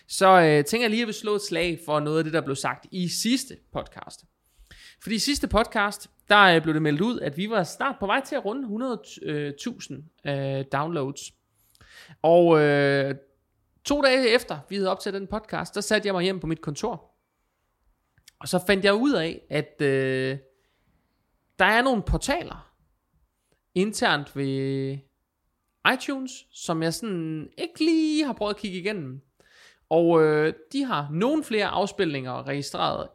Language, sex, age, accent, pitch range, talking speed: Danish, male, 20-39, native, 140-200 Hz, 160 wpm